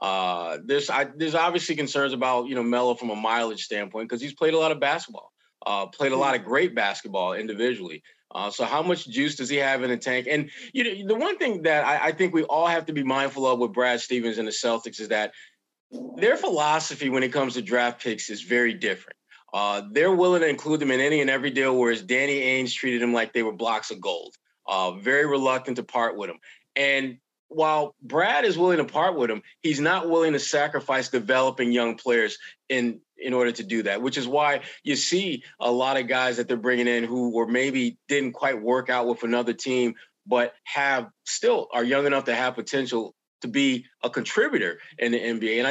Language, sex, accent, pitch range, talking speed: English, male, American, 120-145 Hz, 220 wpm